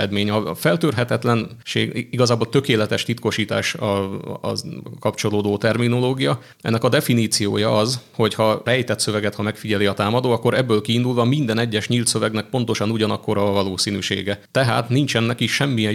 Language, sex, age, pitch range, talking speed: Hungarian, male, 30-49, 105-120 Hz, 130 wpm